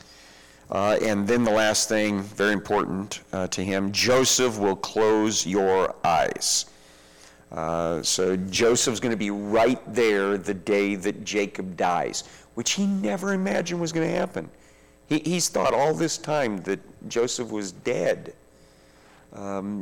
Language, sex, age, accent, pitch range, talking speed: English, male, 50-69, American, 90-120 Hz, 140 wpm